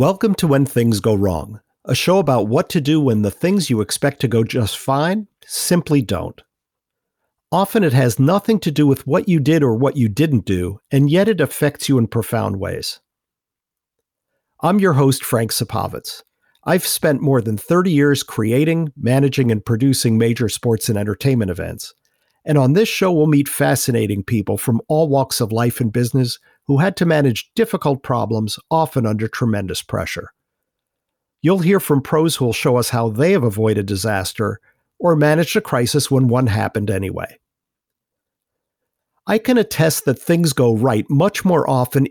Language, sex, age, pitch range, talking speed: English, male, 50-69, 115-155 Hz, 175 wpm